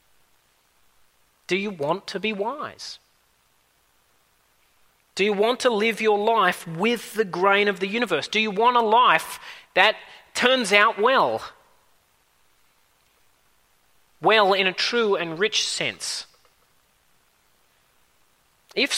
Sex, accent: male, Australian